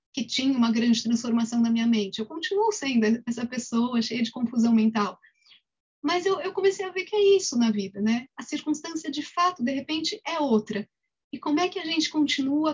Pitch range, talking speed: 225-275 Hz, 205 wpm